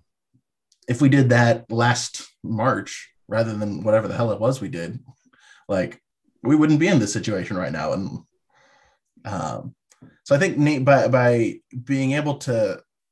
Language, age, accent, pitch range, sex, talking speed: English, 20-39, American, 110-130 Hz, male, 160 wpm